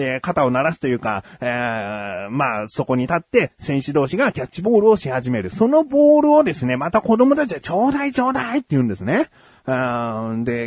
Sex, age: male, 30-49